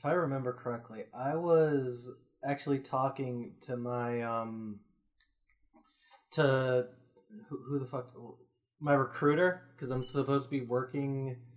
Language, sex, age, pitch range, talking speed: English, male, 20-39, 130-160 Hz, 125 wpm